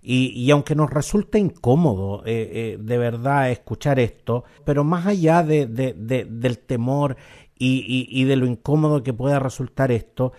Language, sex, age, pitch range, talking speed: Spanish, male, 50-69, 115-150 Hz, 175 wpm